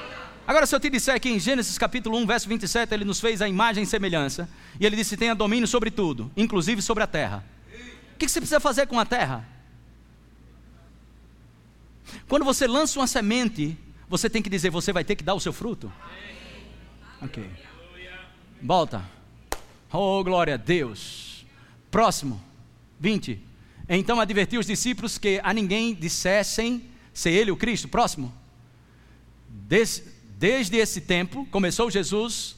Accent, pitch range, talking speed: Brazilian, 150-230 Hz, 150 wpm